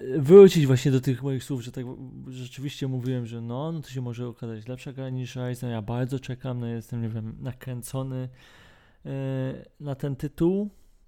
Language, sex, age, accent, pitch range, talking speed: Polish, male, 20-39, native, 120-145 Hz, 170 wpm